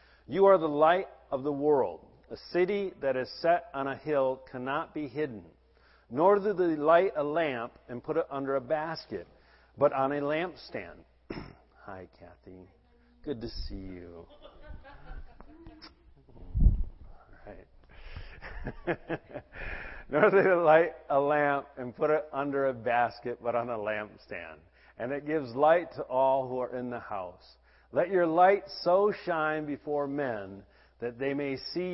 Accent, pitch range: American, 110-150 Hz